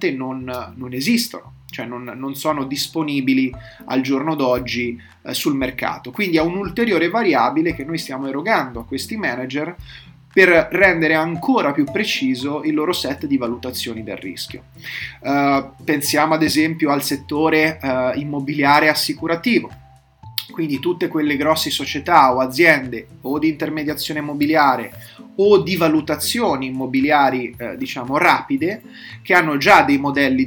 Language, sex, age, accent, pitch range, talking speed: Italian, male, 30-49, native, 130-160 Hz, 130 wpm